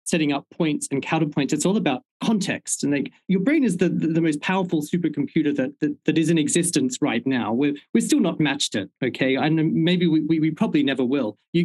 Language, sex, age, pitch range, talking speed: English, male, 40-59, 145-185 Hz, 225 wpm